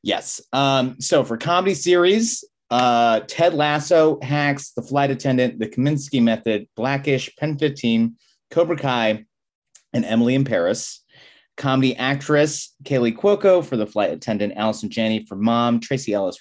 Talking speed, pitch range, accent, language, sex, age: 145 wpm, 105-140 Hz, American, English, male, 30-49